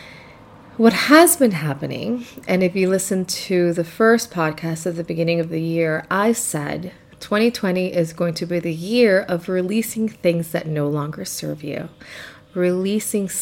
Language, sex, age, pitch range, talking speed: English, female, 30-49, 170-205 Hz, 160 wpm